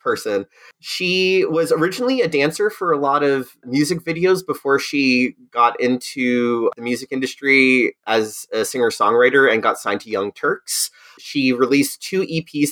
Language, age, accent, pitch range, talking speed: English, 30-49, American, 125-195 Hz, 150 wpm